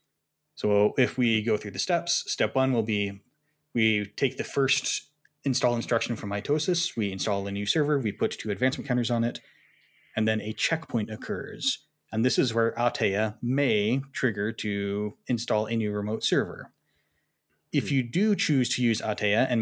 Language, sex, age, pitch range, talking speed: English, male, 20-39, 110-135 Hz, 175 wpm